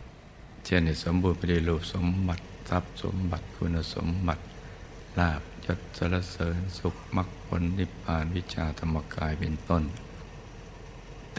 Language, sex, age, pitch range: Thai, male, 60-79, 80-90 Hz